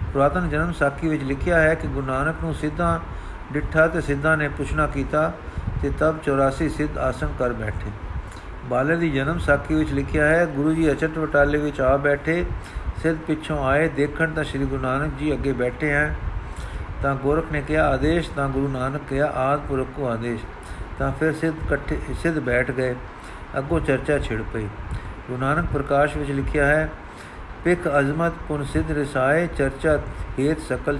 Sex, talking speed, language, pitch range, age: male, 165 wpm, Punjabi, 125-155 Hz, 50-69